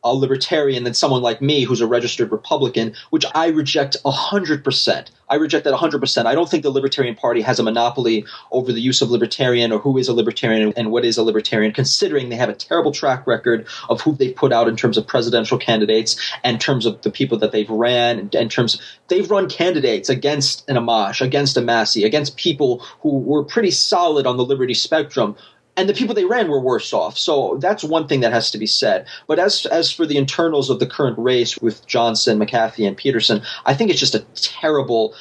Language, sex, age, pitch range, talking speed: English, male, 30-49, 120-155 Hz, 225 wpm